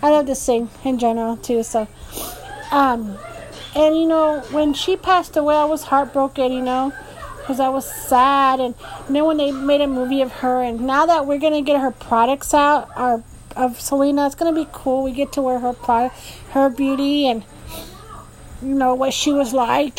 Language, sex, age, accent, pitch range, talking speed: English, female, 40-59, American, 245-285 Hz, 195 wpm